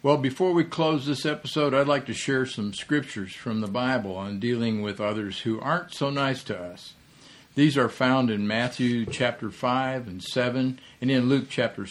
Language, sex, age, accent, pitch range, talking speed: English, male, 50-69, American, 110-140 Hz, 190 wpm